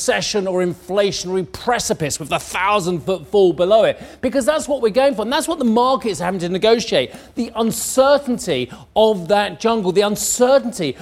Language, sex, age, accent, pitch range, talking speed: English, male, 40-59, British, 180-245 Hz, 175 wpm